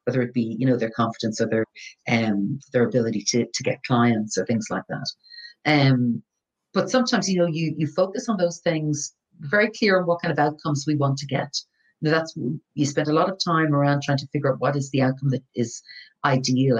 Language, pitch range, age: English, 130-170 Hz, 40-59